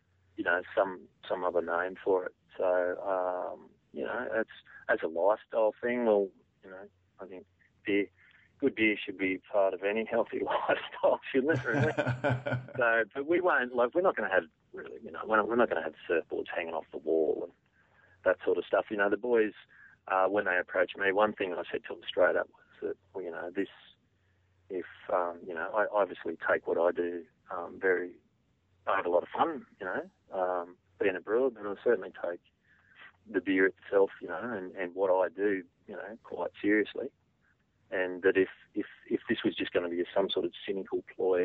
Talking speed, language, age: 205 wpm, English, 40-59